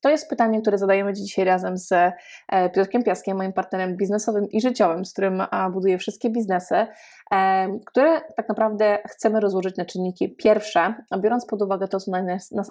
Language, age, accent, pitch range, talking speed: Polish, 20-39, native, 185-215 Hz, 160 wpm